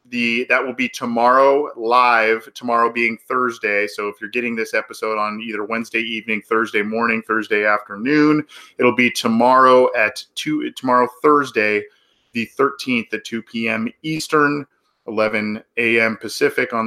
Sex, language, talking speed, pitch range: male, English, 140 wpm, 110-125 Hz